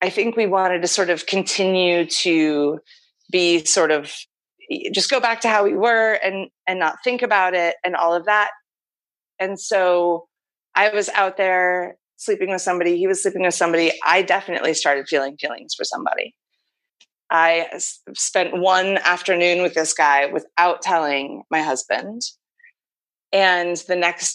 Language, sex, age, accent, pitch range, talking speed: English, female, 30-49, American, 165-195 Hz, 160 wpm